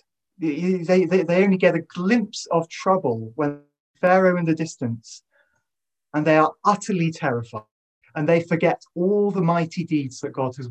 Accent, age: British, 30-49